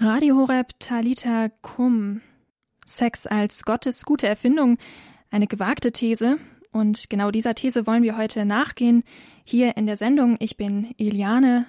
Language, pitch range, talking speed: German, 210-240 Hz, 140 wpm